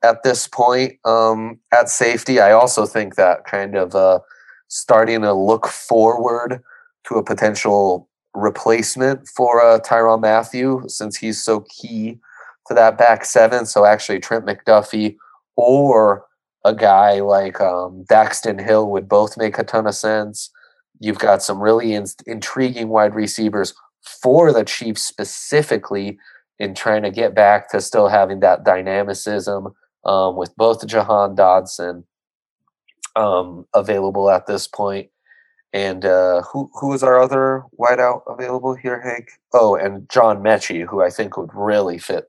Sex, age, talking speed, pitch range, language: male, 30-49, 145 wpm, 100-120 Hz, English